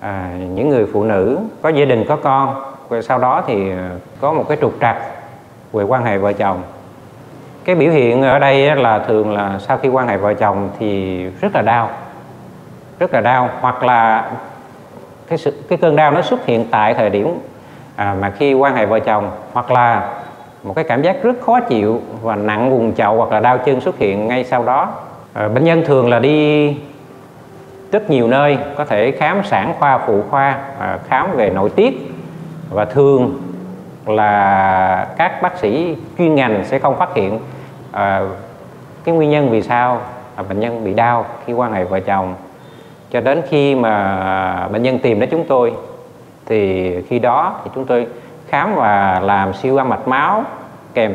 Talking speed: 180 wpm